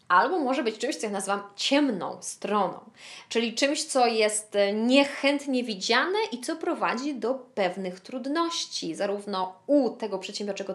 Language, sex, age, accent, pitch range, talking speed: Polish, female, 20-39, native, 210-295 Hz, 140 wpm